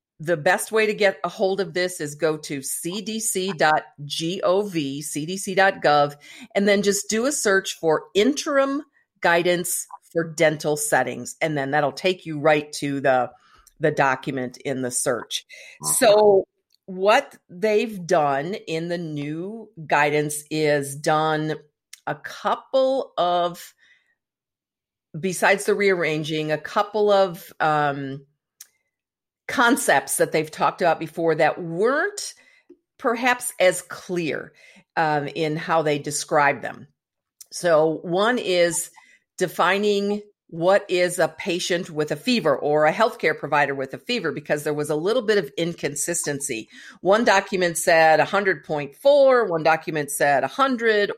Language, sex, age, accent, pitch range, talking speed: English, female, 50-69, American, 150-200 Hz, 130 wpm